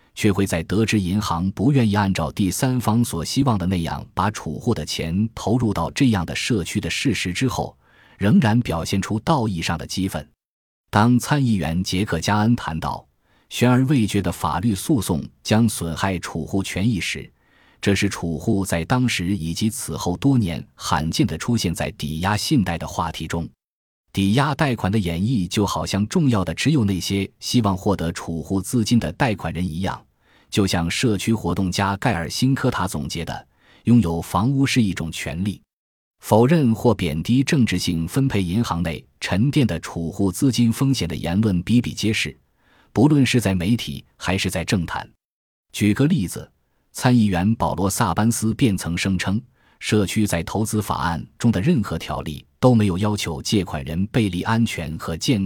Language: Chinese